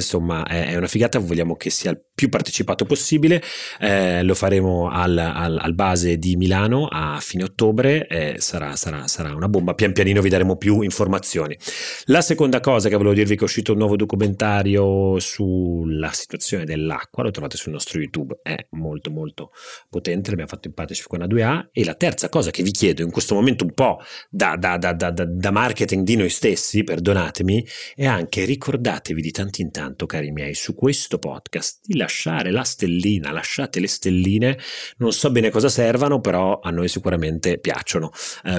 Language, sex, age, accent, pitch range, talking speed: Italian, male, 30-49, native, 85-110 Hz, 185 wpm